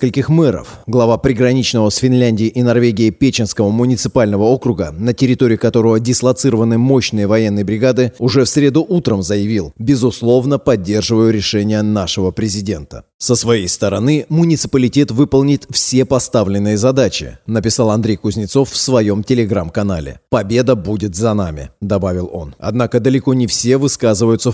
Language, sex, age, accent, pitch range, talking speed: Russian, male, 30-49, native, 105-135 Hz, 125 wpm